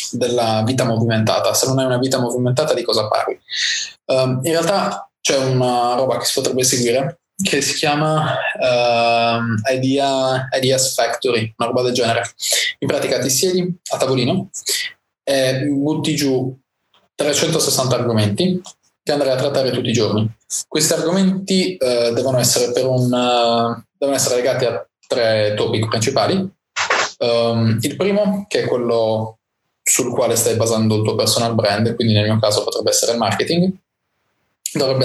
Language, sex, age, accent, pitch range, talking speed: Italian, male, 20-39, native, 115-150 Hz, 150 wpm